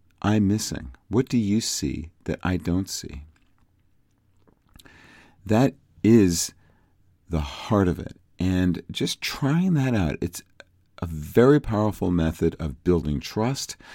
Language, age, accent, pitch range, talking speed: English, 50-69, American, 85-115 Hz, 125 wpm